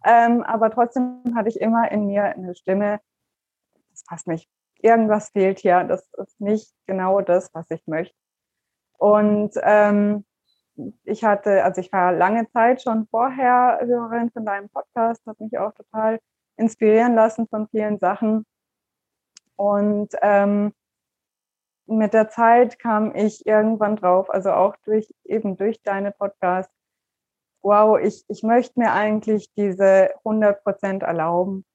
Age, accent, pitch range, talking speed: 20-39, German, 195-230 Hz, 140 wpm